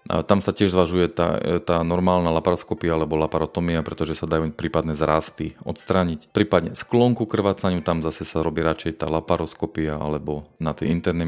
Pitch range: 85-100 Hz